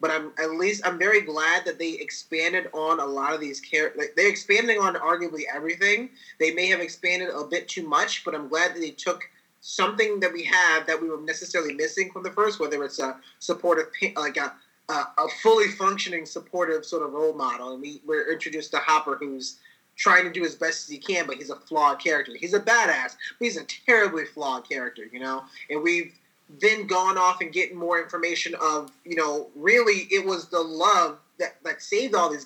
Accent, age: American, 20-39